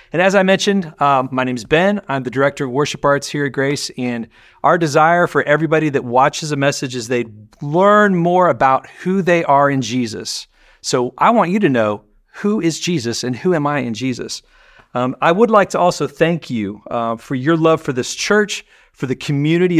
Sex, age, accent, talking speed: male, 40-59, American, 210 wpm